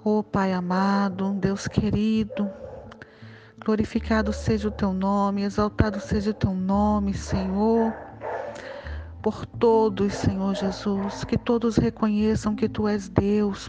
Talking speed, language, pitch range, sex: 120 wpm, Portuguese, 195-230 Hz, female